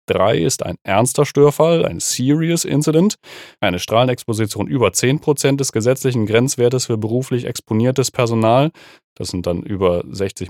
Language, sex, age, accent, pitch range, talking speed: German, male, 30-49, German, 100-140 Hz, 135 wpm